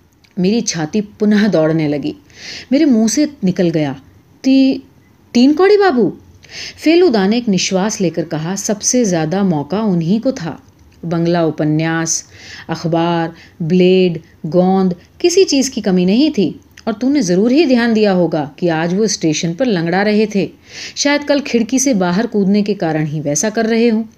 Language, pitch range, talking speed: Urdu, 170-250 Hz, 170 wpm